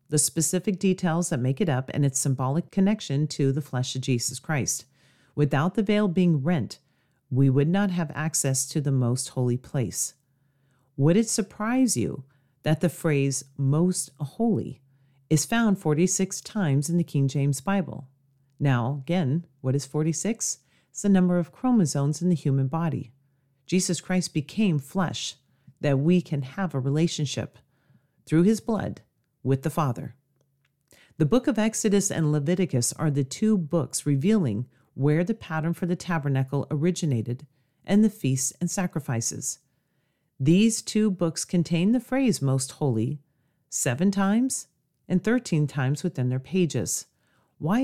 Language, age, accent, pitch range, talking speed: English, 40-59, American, 135-180 Hz, 150 wpm